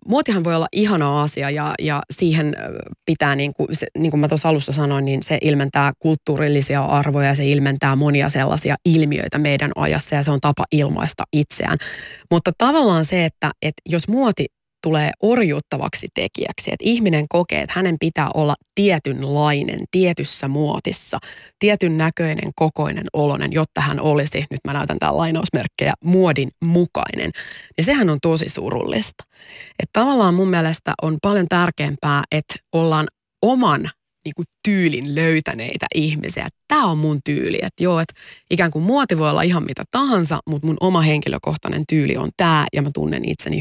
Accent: native